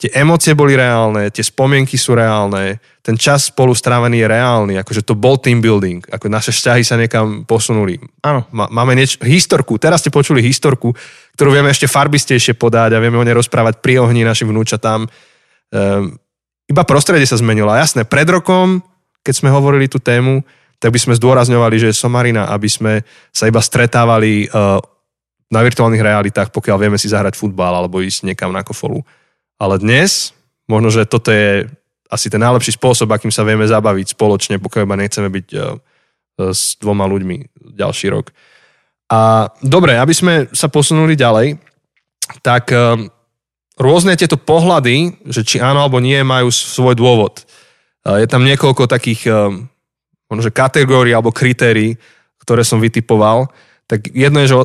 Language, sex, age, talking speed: Slovak, male, 20-39, 160 wpm